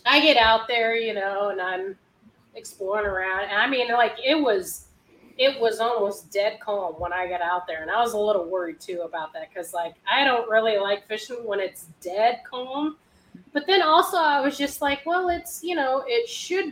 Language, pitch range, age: English, 200-315 Hz, 30-49